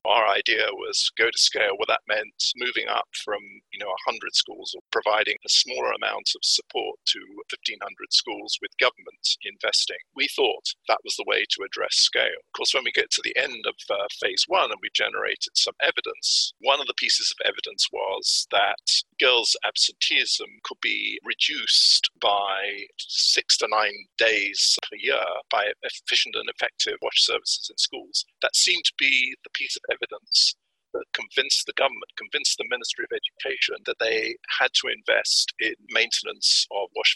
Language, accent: English, British